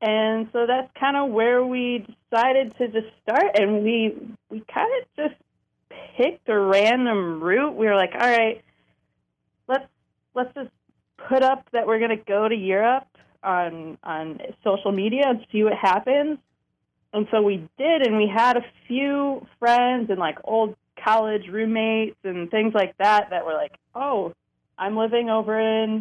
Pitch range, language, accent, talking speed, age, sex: 195-235 Hz, English, American, 165 wpm, 20-39, female